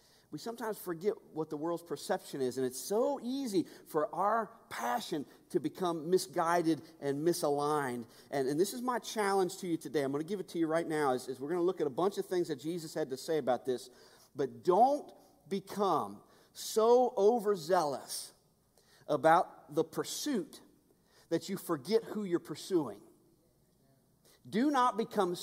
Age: 40-59